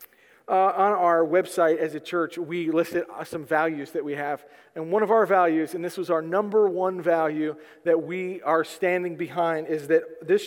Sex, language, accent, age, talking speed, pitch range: male, English, American, 40-59, 195 wpm, 180-235 Hz